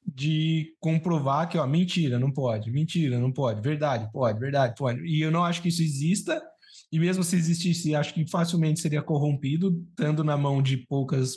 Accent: Brazilian